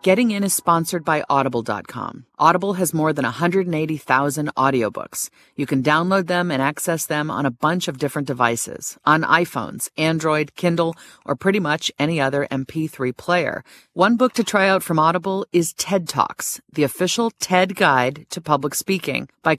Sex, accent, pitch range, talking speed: female, American, 135-180 Hz, 165 wpm